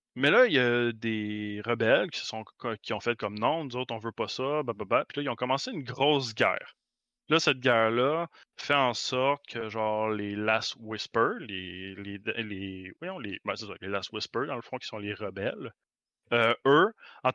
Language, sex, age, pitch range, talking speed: French, male, 20-39, 110-130 Hz, 220 wpm